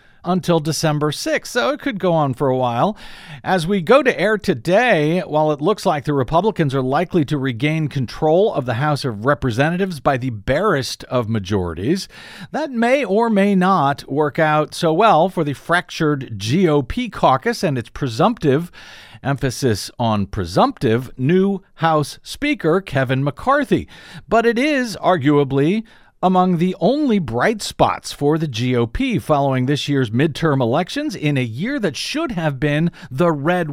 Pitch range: 135-185 Hz